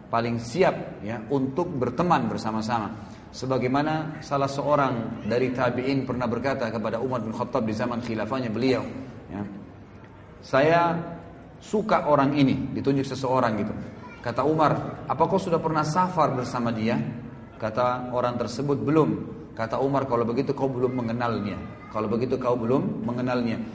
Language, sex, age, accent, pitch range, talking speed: Italian, male, 30-49, Indonesian, 115-145 Hz, 135 wpm